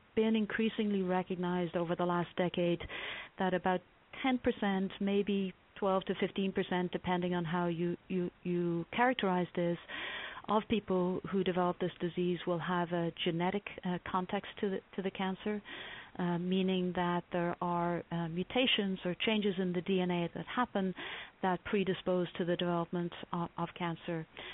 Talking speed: 145 wpm